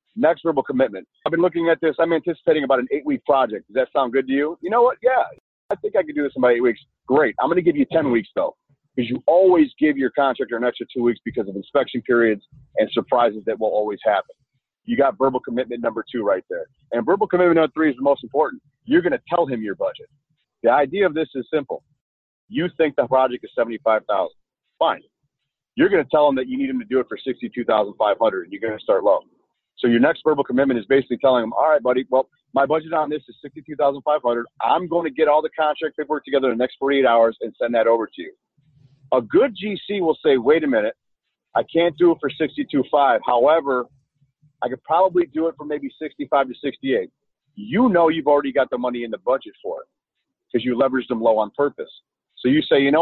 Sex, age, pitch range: male, 40-59, 130-175 Hz